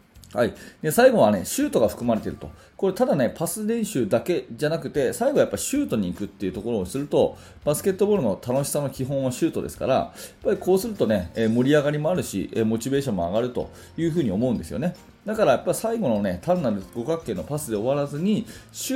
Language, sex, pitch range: Japanese, male, 110-165 Hz